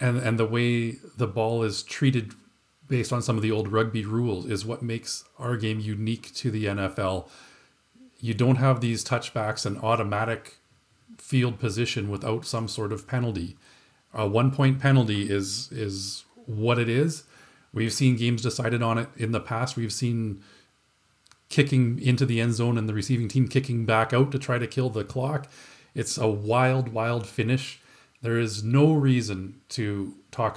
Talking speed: 170 wpm